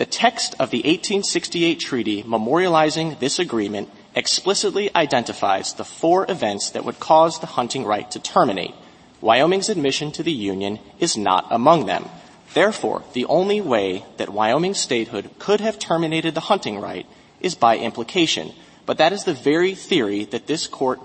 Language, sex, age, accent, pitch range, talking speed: English, male, 30-49, American, 115-180 Hz, 160 wpm